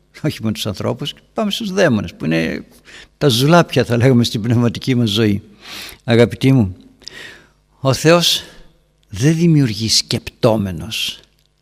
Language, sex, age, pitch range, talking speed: Greek, male, 60-79, 115-145 Hz, 125 wpm